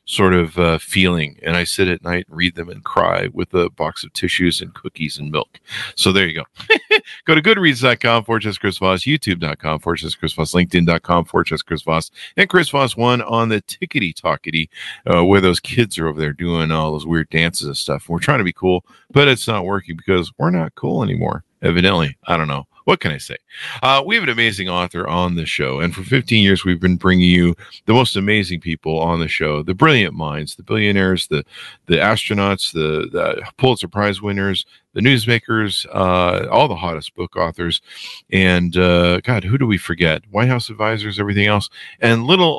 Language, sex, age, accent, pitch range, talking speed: English, male, 50-69, American, 80-110 Hz, 205 wpm